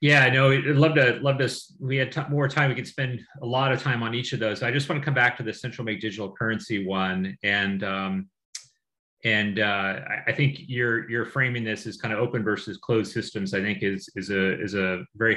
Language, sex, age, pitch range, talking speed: English, male, 30-49, 105-130 Hz, 240 wpm